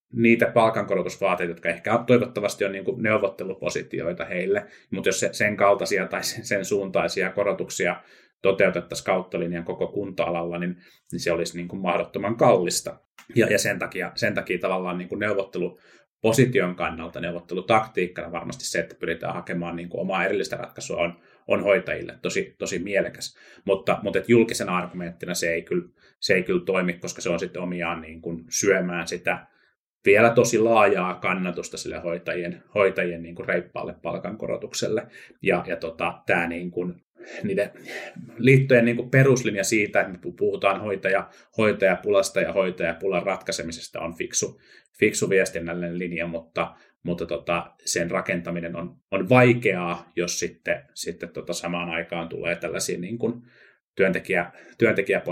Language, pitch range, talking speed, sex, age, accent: Finnish, 85-105 Hz, 125 wpm, male, 30-49, native